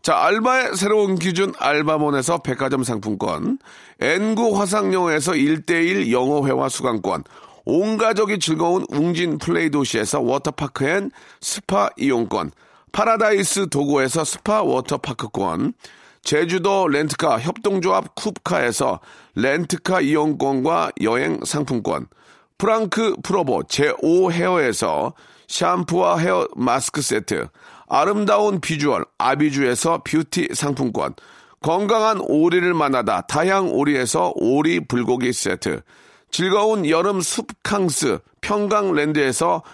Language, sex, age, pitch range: Korean, male, 40-59, 145-205 Hz